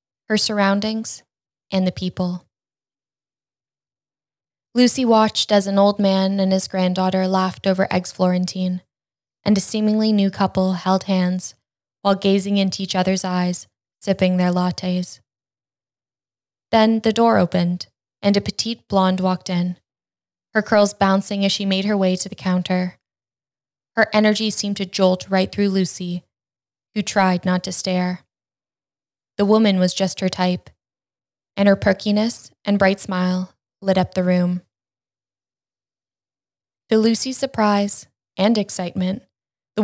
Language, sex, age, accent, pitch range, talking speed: English, female, 10-29, American, 180-200 Hz, 135 wpm